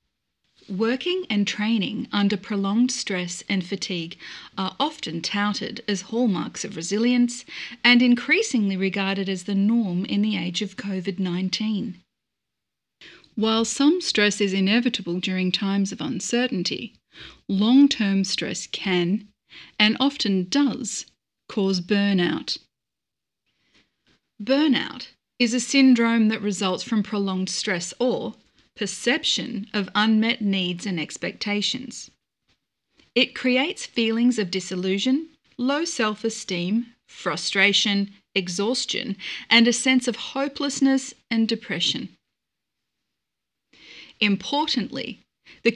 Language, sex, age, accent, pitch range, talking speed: English, female, 30-49, Australian, 195-245 Hz, 100 wpm